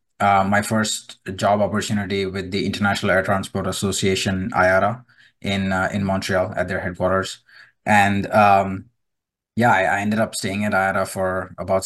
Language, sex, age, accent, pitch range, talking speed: English, male, 20-39, Indian, 95-110 Hz, 155 wpm